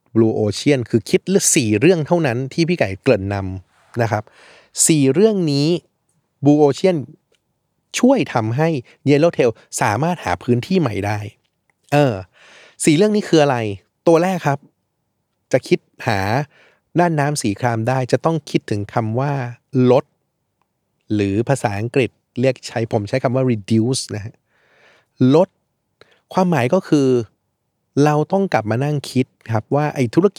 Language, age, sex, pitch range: Thai, 20-39, male, 115-160 Hz